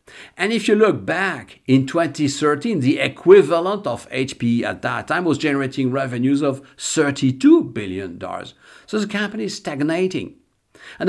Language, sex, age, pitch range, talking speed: English, male, 50-69, 115-170 Hz, 140 wpm